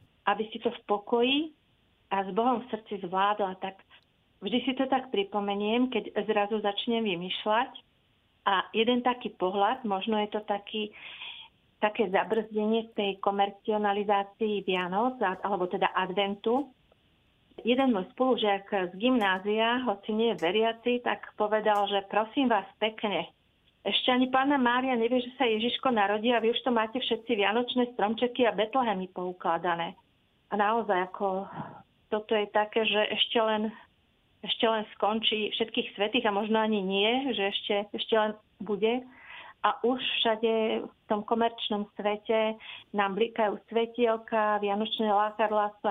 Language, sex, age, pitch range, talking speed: Slovak, female, 40-59, 205-230 Hz, 140 wpm